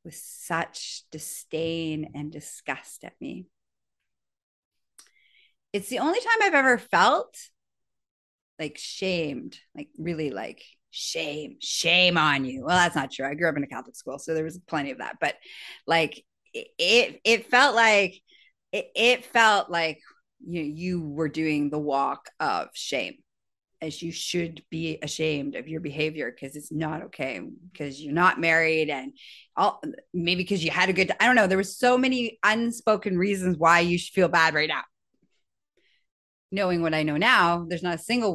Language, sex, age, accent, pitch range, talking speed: English, female, 30-49, American, 155-200 Hz, 165 wpm